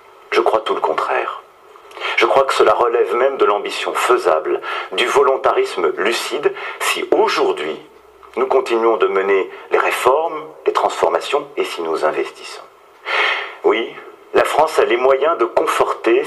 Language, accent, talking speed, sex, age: French, French, 145 wpm, male, 40-59